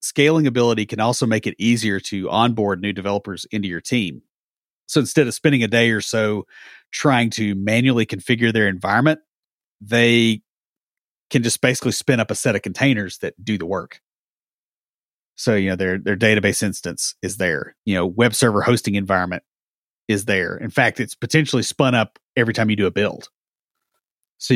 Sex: male